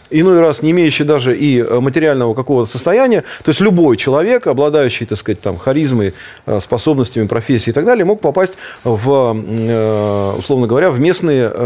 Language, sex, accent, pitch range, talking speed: Russian, male, native, 115-170 Hz, 155 wpm